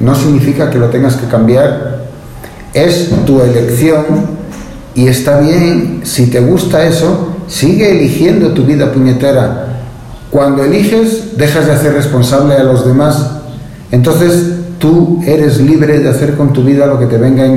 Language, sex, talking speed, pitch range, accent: Spanish, male, 155 wpm, 125-155 Hz, Mexican